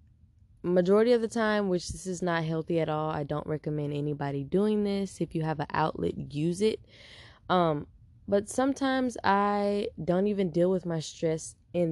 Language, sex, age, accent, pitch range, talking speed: English, female, 10-29, American, 115-170 Hz, 175 wpm